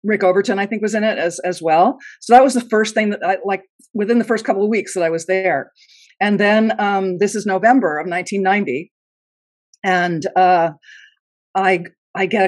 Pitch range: 180-235 Hz